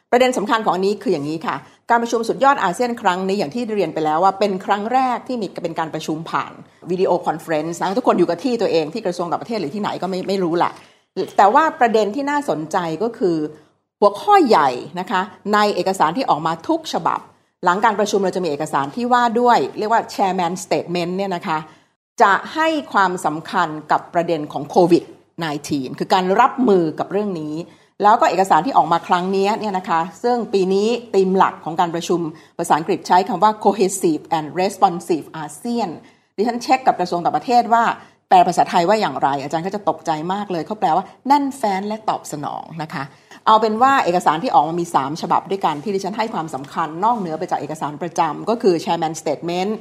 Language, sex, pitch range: English, female, 170-230 Hz